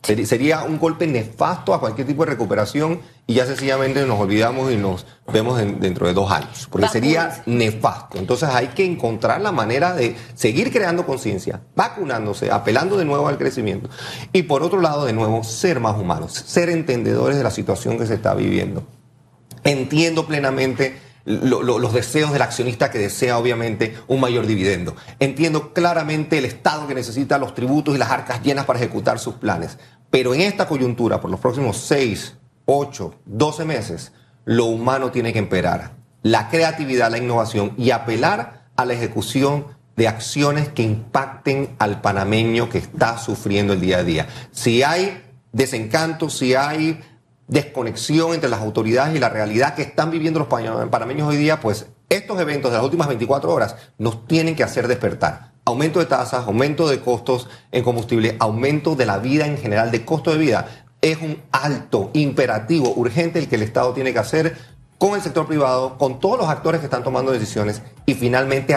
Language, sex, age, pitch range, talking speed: Spanish, male, 30-49, 115-150 Hz, 175 wpm